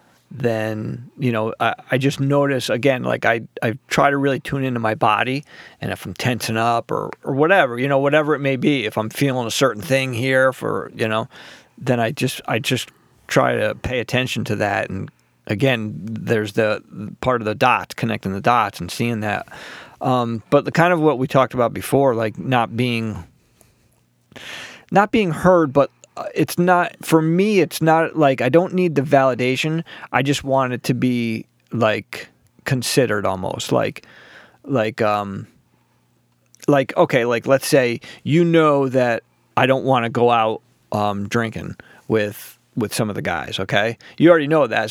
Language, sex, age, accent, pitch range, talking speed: English, male, 40-59, American, 110-140 Hz, 180 wpm